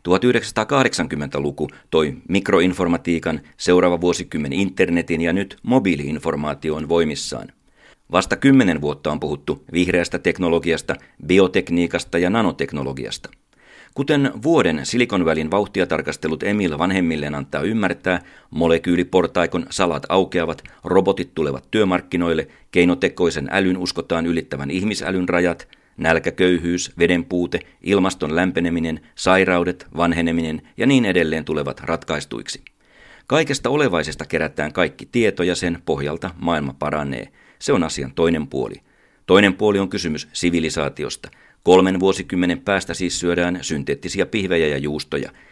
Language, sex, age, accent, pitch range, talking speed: Finnish, male, 40-59, native, 80-95 Hz, 105 wpm